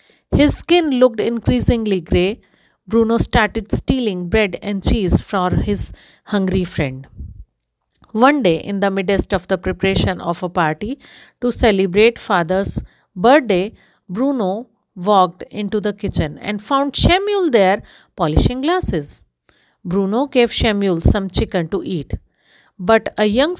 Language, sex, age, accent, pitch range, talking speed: English, female, 50-69, Indian, 185-245 Hz, 130 wpm